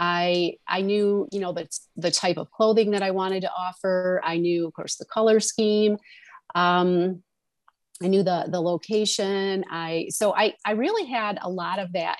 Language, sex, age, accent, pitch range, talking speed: English, female, 30-49, American, 165-200 Hz, 185 wpm